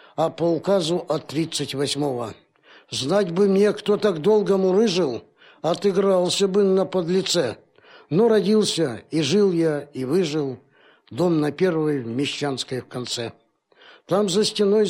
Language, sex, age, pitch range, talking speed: Russian, male, 60-79, 165-210 Hz, 130 wpm